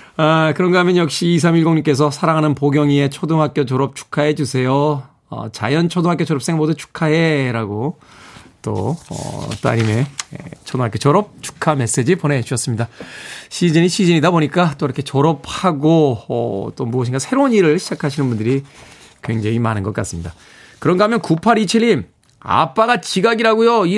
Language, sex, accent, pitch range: Korean, male, native, 125-180 Hz